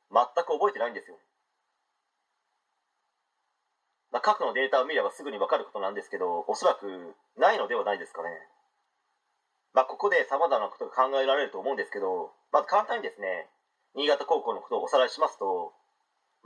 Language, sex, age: Japanese, male, 30-49